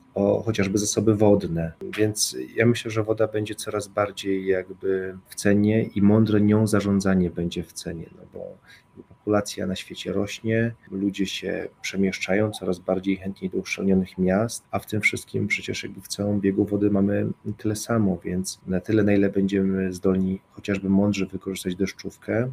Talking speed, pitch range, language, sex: 155 wpm, 95-110 Hz, Polish, male